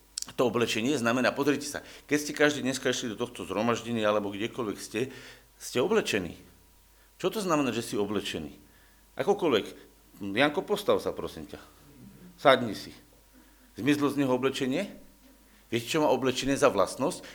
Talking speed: 145 wpm